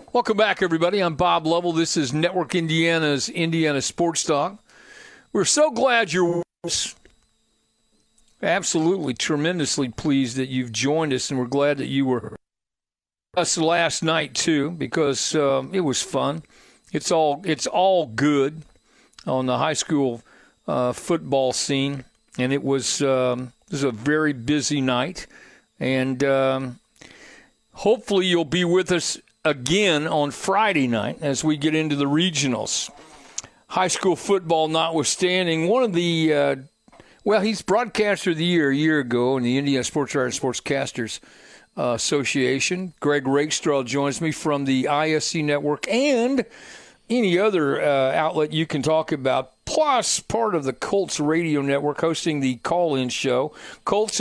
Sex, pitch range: male, 135-175 Hz